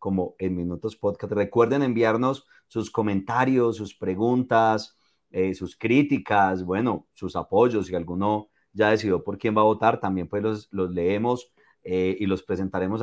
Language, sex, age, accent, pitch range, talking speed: Spanish, male, 30-49, Colombian, 110-135 Hz, 155 wpm